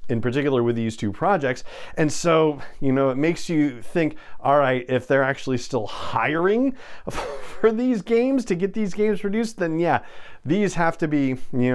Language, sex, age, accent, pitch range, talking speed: English, male, 40-59, American, 125-170 Hz, 185 wpm